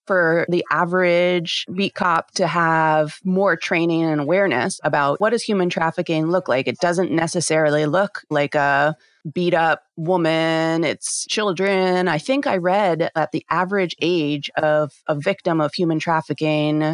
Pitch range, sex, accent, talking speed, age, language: 155-185 Hz, female, American, 150 wpm, 30-49, English